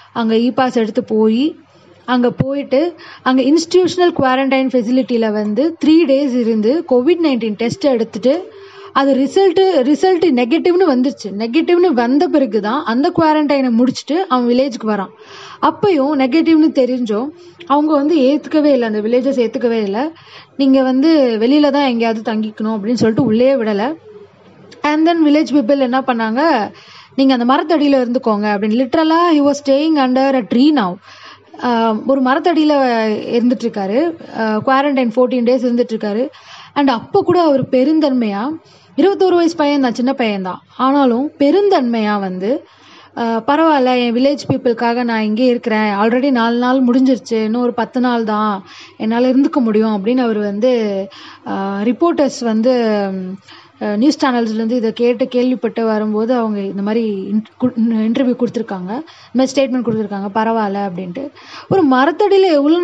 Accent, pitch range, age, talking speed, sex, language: native, 225-295 Hz, 20-39, 130 wpm, female, Tamil